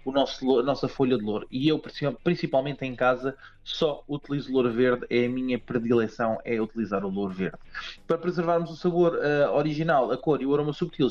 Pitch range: 120-150 Hz